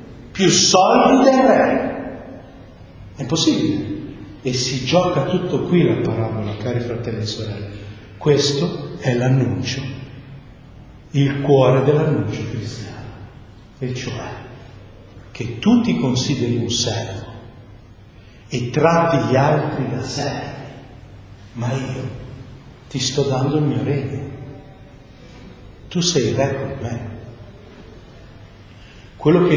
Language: Italian